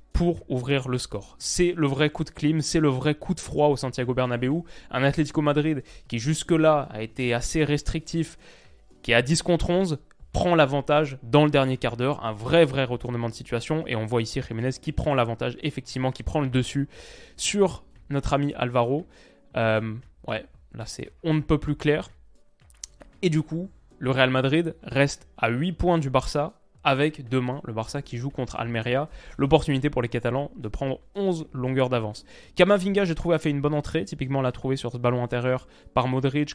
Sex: male